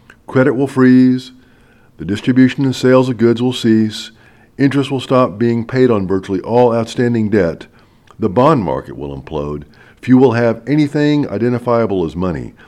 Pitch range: 100-130 Hz